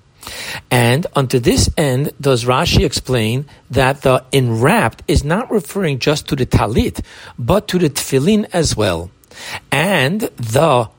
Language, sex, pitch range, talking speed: English, male, 120-160 Hz, 135 wpm